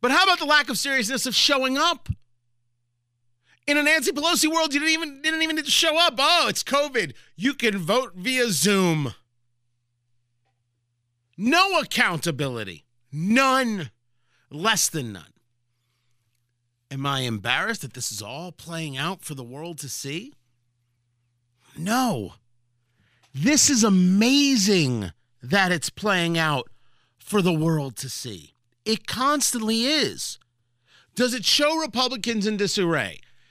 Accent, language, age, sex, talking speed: American, English, 40-59, male, 130 wpm